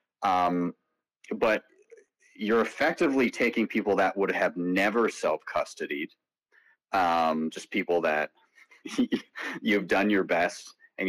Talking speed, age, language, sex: 110 wpm, 30-49, English, male